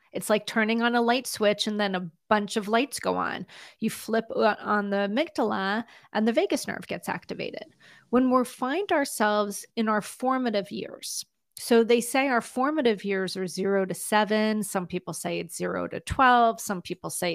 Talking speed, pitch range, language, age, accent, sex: 185 wpm, 195-255 Hz, English, 40-59, American, female